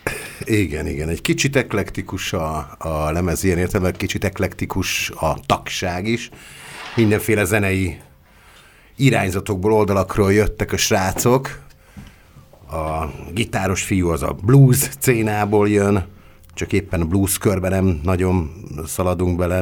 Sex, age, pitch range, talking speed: male, 50-69, 85-105 Hz, 120 wpm